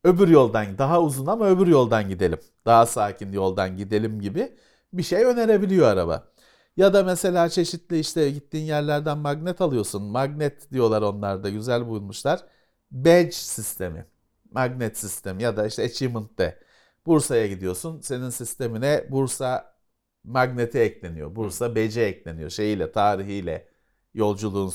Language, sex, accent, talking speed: Turkish, male, native, 130 wpm